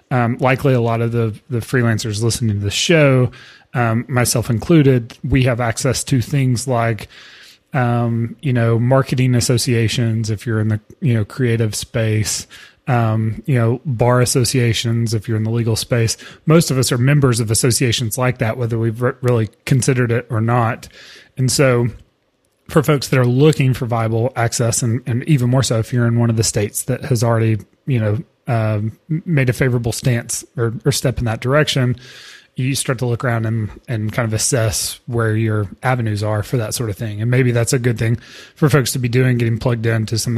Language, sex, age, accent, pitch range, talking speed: English, male, 30-49, American, 115-130 Hz, 200 wpm